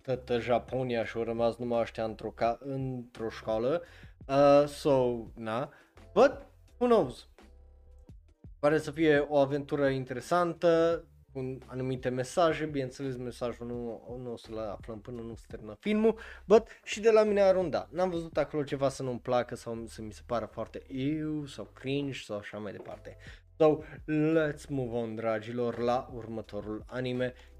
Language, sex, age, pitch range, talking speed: Romanian, male, 20-39, 115-155 Hz, 160 wpm